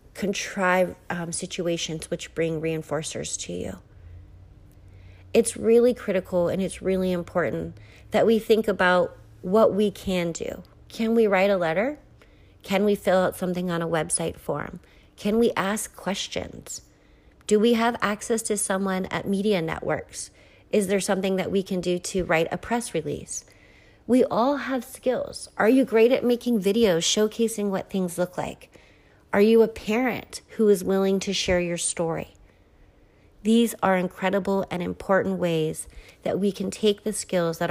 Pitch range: 170-205 Hz